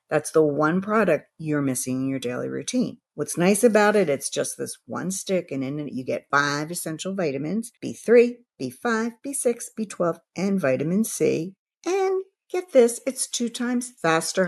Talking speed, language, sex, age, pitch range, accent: 170 wpm, English, female, 50-69, 145-215 Hz, American